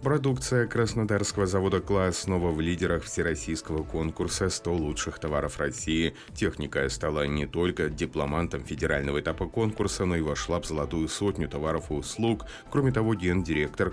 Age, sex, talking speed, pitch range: 30-49, male, 140 wpm, 75-95 Hz